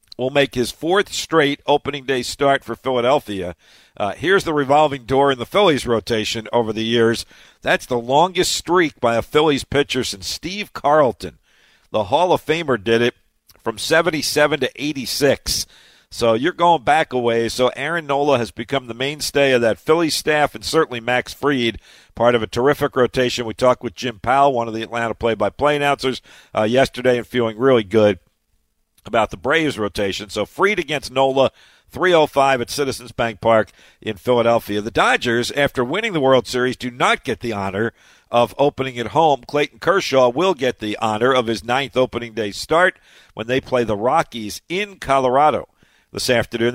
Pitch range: 115-145 Hz